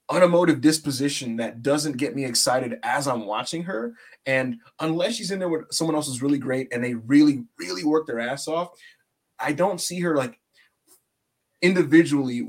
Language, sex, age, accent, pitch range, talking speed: English, male, 20-39, American, 120-155 Hz, 175 wpm